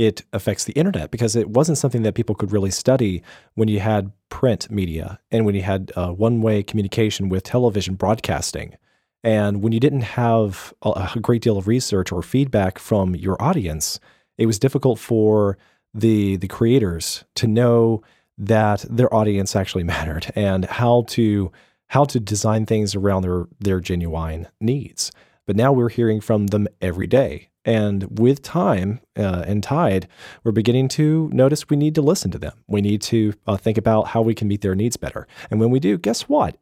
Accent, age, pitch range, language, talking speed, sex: American, 40-59, 95-120 Hz, English, 185 wpm, male